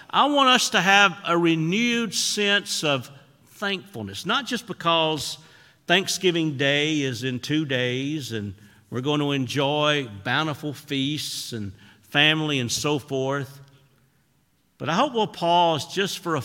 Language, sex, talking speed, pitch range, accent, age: English, male, 140 wpm, 115-155 Hz, American, 50-69